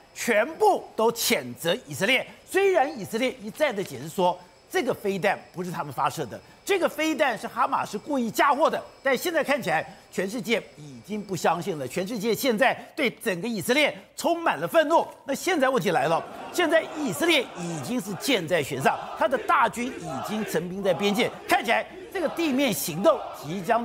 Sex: male